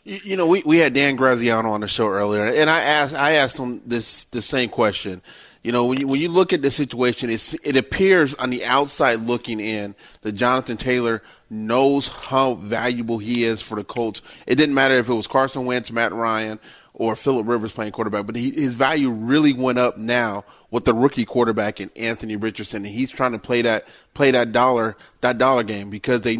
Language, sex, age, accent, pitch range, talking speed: English, male, 30-49, American, 115-140 Hz, 215 wpm